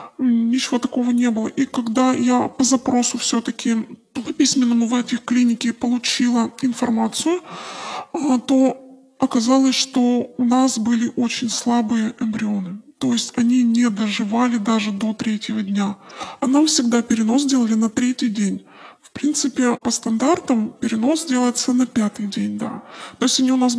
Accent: native